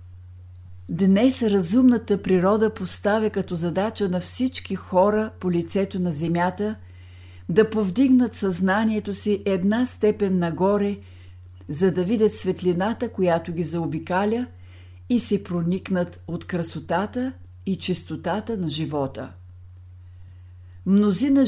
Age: 50-69